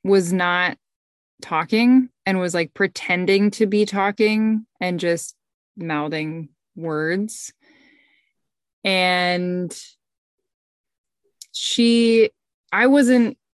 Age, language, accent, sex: 20-39, English, American, female